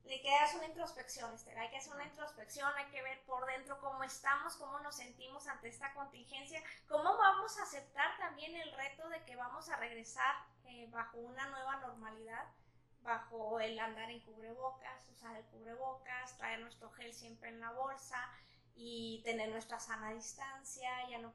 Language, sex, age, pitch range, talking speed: Spanish, female, 20-39, 230-275 Hz, 170 wpm